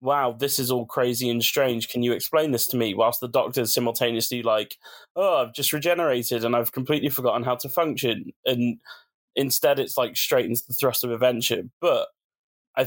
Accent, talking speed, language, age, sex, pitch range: British, 190 wpm, English, 20-39, male, 120-140 Hz